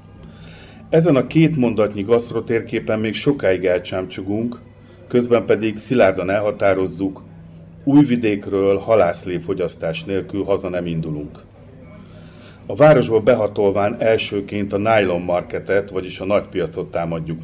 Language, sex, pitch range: Hungarian, male, 90-110 Hz